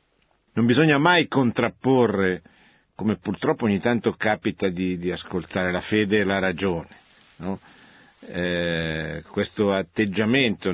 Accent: native